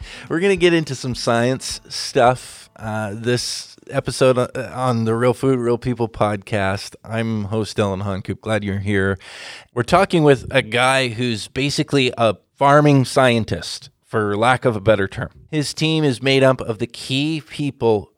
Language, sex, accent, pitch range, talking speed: English, male, American, 110-130 Hz, 165 wpm